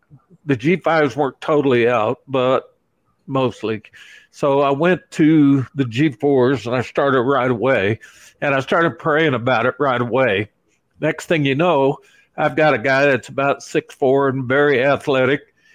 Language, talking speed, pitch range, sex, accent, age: English, 150 wpm, 135-220 Hz, male, American, 60-79